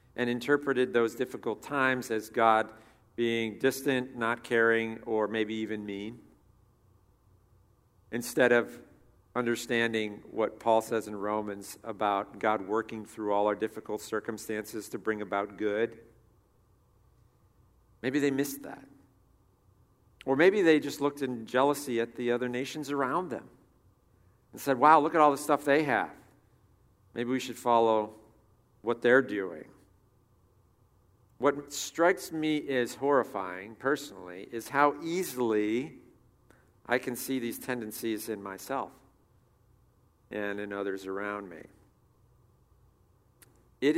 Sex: male